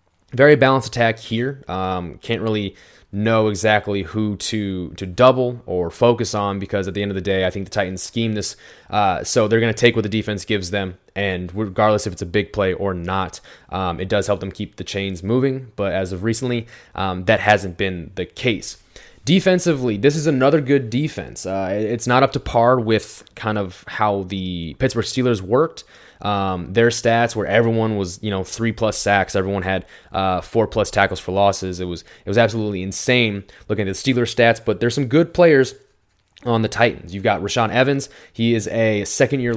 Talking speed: 205 wpm